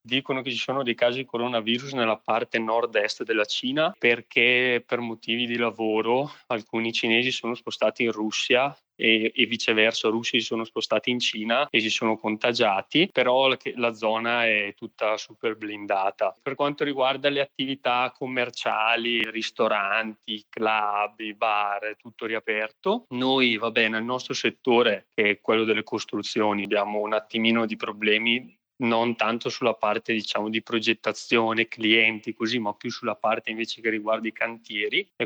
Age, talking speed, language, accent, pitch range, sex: 20-39, 155 wpm, Italian, native, 110-120 Hz, male